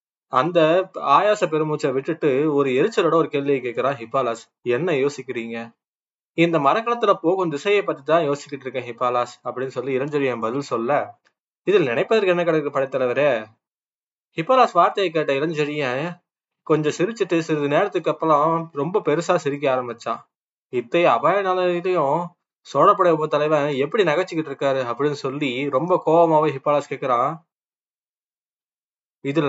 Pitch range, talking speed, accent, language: 140-175 Hz, 115 wpm, native, Tamil